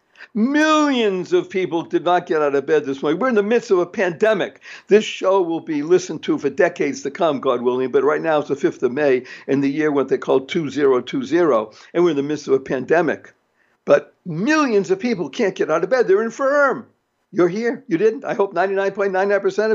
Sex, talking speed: male, 215 wpm